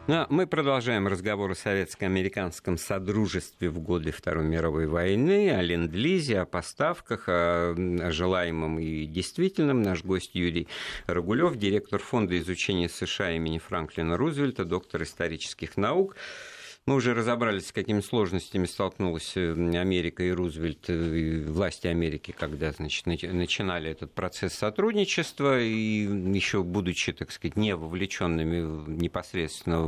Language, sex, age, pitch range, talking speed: Russian, male, 50-69, 85-115 Hz, 115 wpm